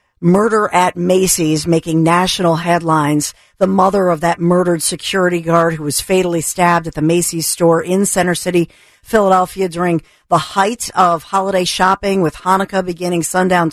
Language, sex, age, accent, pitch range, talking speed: English, female, 50-69, American, 165-190 Hz, 155 wpm